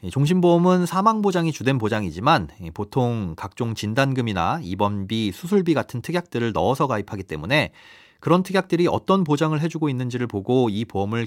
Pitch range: 105-160 Hz